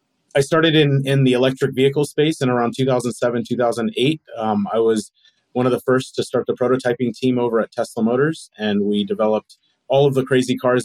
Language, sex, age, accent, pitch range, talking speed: English, male, 30-49, American, 115-135 Hz, 200 wpm